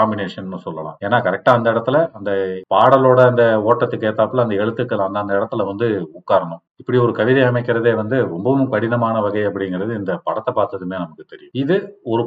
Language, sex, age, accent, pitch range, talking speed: Tamil, male, 40-59, native, 100-130 Hz, 50 wpm